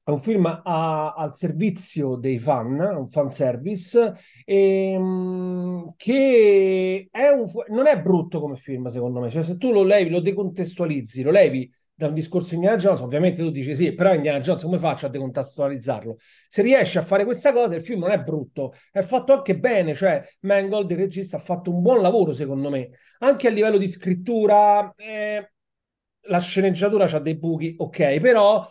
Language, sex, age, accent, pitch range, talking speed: Italian, male, 40-59, native, 155-205 Hz, 175 wpm